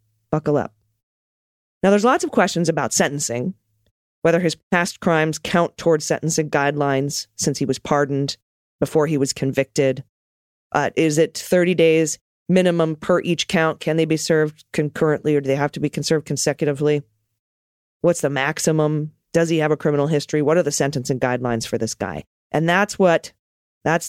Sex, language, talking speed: female, English, 170 wpm